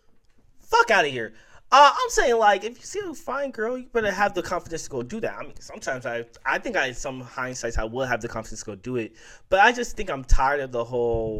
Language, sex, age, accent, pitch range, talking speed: English, male, 20-39, American, 115-180 Hz, 265 wpm